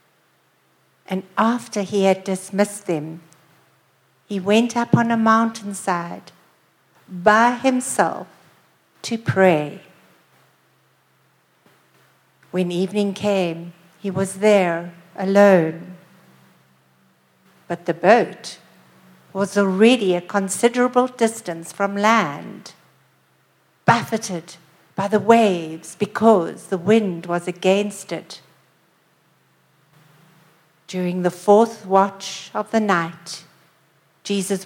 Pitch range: 155-205 Hz